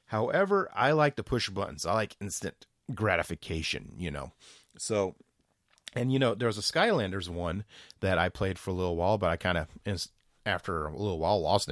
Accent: American